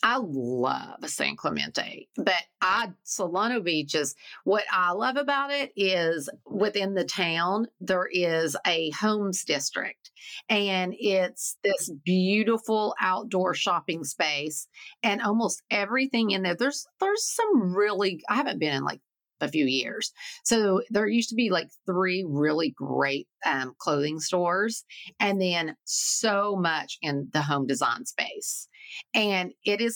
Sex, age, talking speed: female, 40-59, 140 wpm